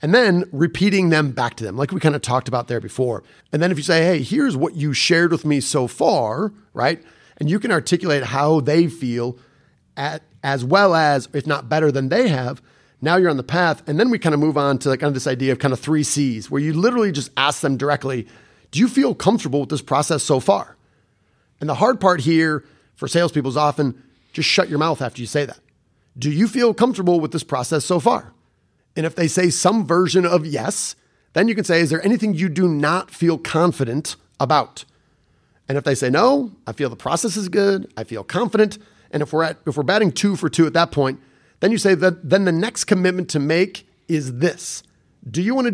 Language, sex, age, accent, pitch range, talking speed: English, male, 30-49, American, 140-185 Hz, 230 wpm